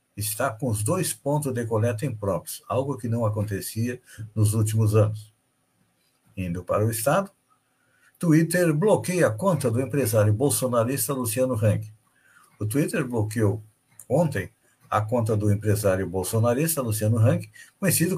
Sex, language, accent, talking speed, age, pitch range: male, Portuguese, Brazilian, 130 wpm, 60-79, 110-145 Hz